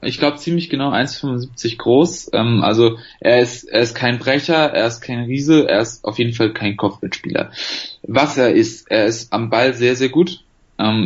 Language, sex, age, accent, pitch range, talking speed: German, male, 20-39, German, 115-140 Hz, 195 wpm